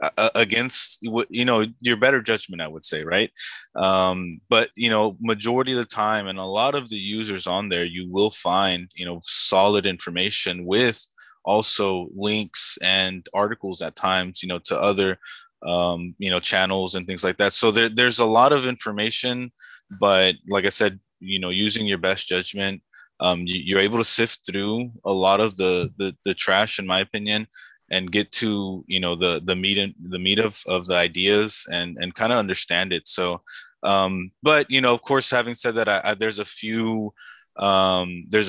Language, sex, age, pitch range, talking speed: English, male, 20-39, 95-110 Hz, 190 wpm